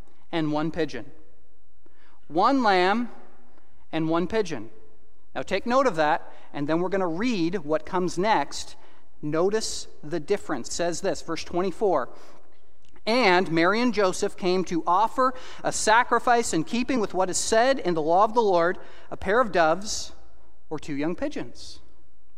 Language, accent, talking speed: English, American, 160 wpm